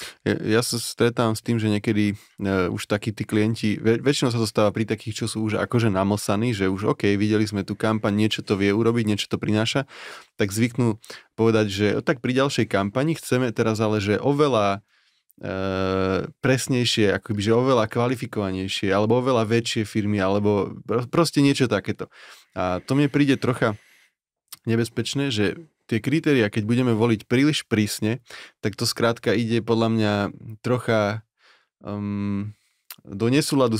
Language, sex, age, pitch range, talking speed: Slovak, male, 30-49, 105-120 Hz, 160 wpm